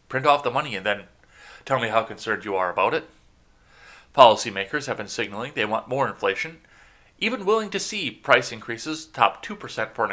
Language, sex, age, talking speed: English, male, 30-49, 190 wpm